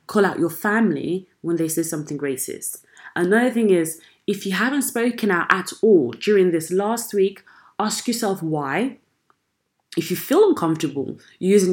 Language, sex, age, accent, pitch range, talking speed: English, female, 20-39, British, 165-225 Hz, 160 wpm